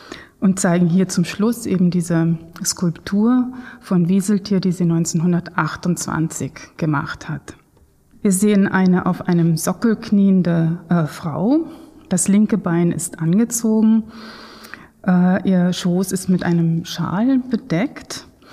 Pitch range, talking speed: 170-205 Hz, 120 wpm